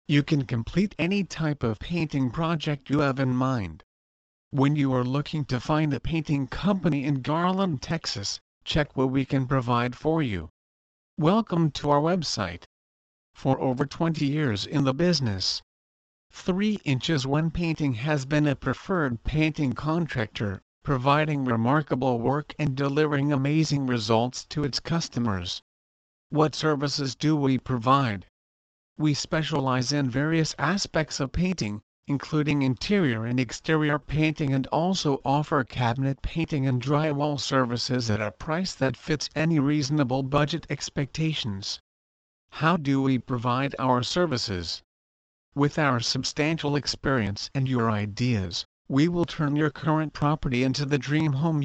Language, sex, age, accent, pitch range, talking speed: English, male, 50-69, American, 120-155 Hz, 135 wpm